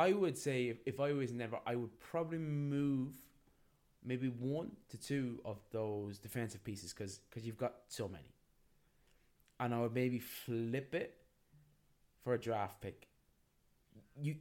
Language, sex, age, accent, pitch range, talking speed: English, male, 20-39, British, 105-135 Hz, 155 wpm